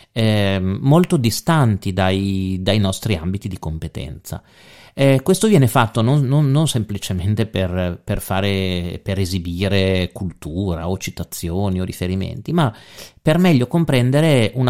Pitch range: 95-120 Hz